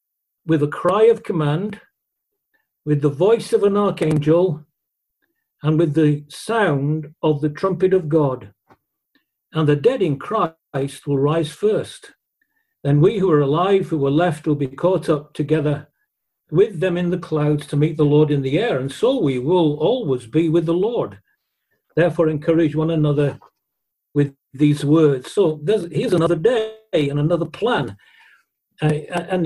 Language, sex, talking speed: English, male, 160 wpm